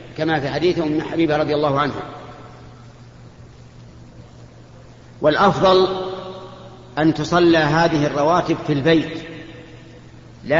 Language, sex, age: Arabic, male, 50-69